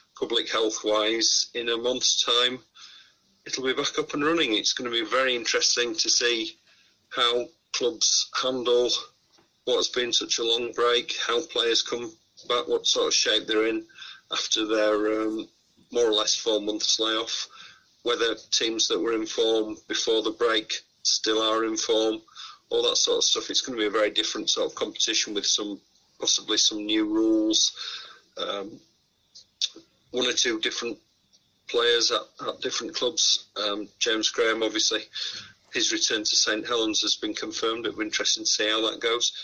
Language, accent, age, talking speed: English, British, 40-59, 170 wpm